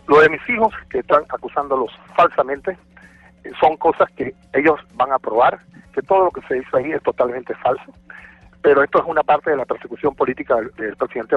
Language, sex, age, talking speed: Spanish, male, 40-59, 195 wpm